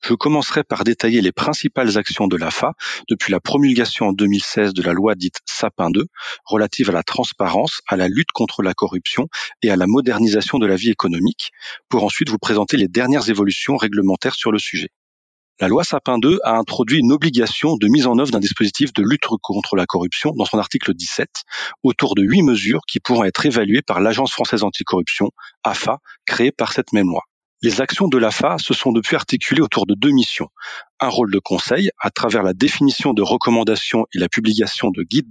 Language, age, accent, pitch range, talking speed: French, 40-59, French, 100-130 Hz, 200 wpm